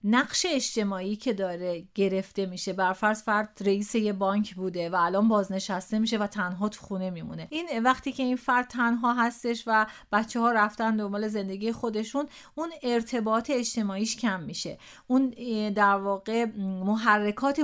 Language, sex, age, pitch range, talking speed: Persian, female, 30-49, 200-250 Hz, 155 wpm